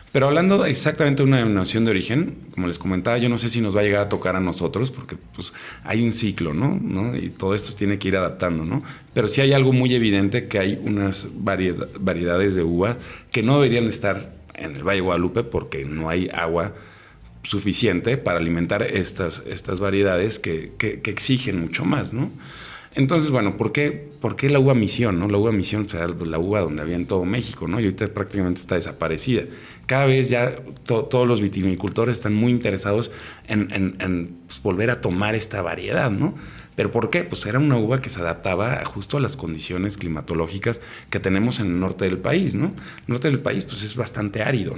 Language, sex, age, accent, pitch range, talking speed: Spanish, male, 40-59, Mexican, 90-120 Hz, 210 wpm